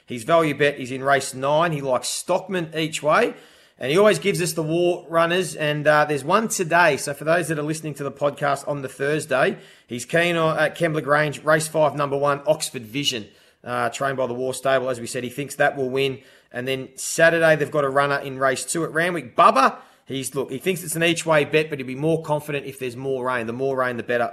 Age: 30-49